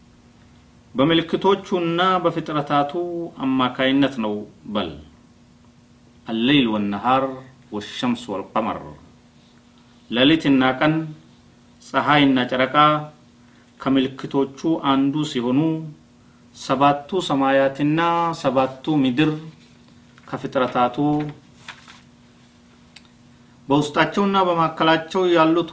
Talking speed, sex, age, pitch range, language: 60 wpm, male, 40-59, 125-160 Hz, Amharic